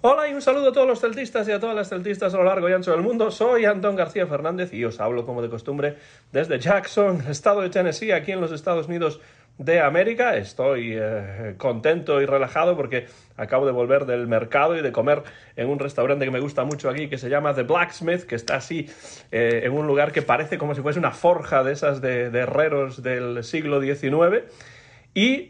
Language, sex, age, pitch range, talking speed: Spanish, male, 40-59, 120-175 Hz, 215 wpm